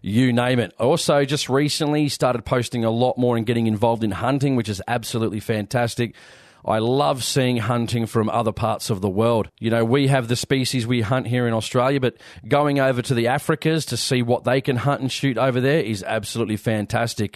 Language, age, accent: English, 30-49, Australian